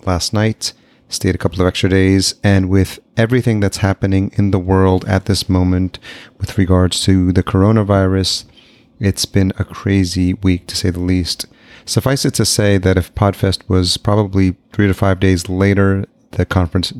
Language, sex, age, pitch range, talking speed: English, male, 30-49, 90-100 Hz, 175 wpm